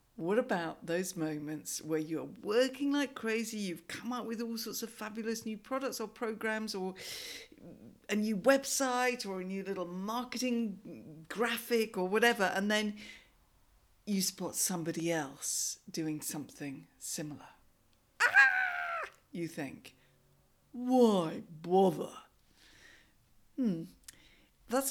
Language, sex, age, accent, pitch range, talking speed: English, female, 50-69, British, 170-245 Hz, 115 wpm